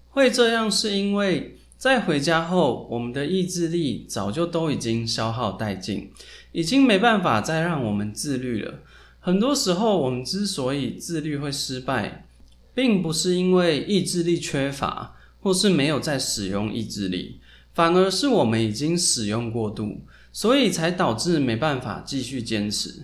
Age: 20-39